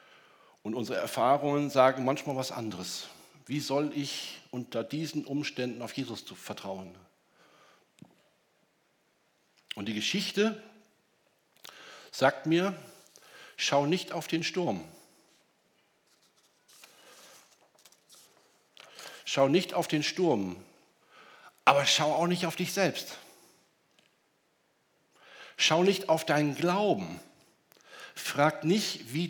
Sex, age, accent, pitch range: male, 60-79, German, 120-180 Hz